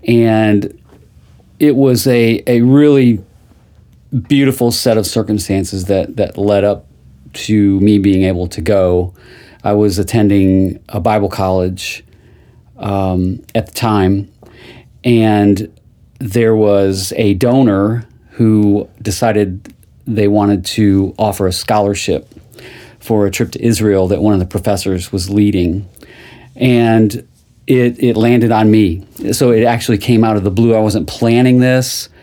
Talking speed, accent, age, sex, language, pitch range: 135 wpm, American, 40-59, male, English, 100-120 Hz